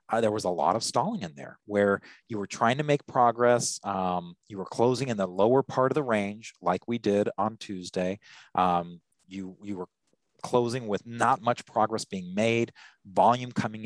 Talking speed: 195 wpm